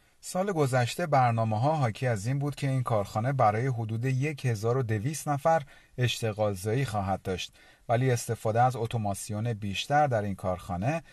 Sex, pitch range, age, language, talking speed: male, 100-140 Hz, 40-59, Persian, 140 wpm